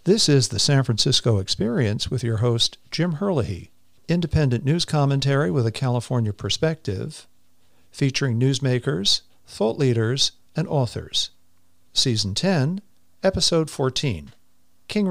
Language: English